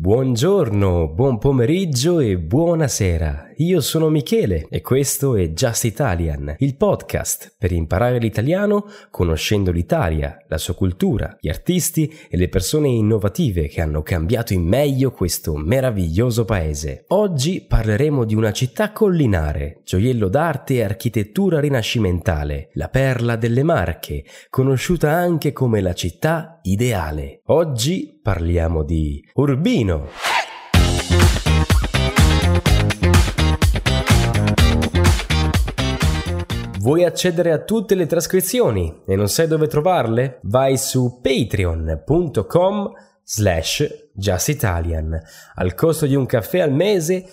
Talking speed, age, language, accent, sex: 110 wpm, 20-39, Italian, native, male